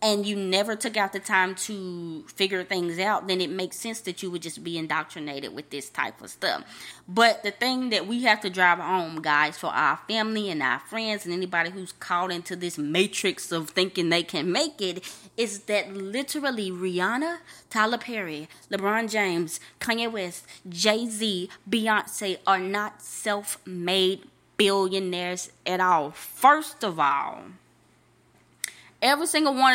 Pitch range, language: 180-230 Hz, English